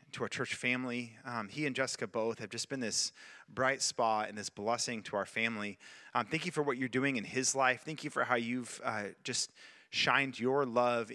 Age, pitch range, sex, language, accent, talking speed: 30-49, 115-130 Hz, male, English, American, 220 wpm